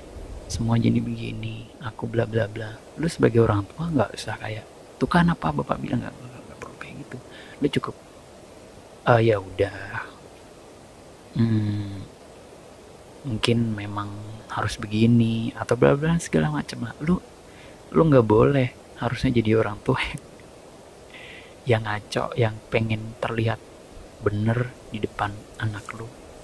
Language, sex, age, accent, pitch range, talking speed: Indonesian, male, 30-49, native, 105-120 Hz, 130 wpm